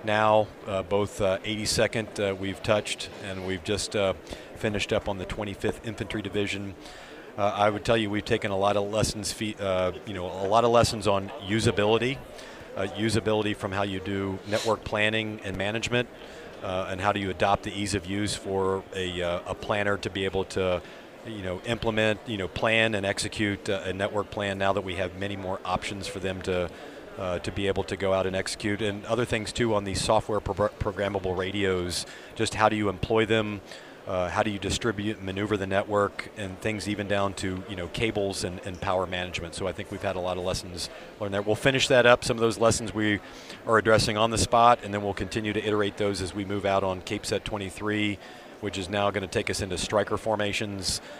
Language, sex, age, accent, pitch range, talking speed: English, male, 40-59, American, 95-110 Hz, 220 wpm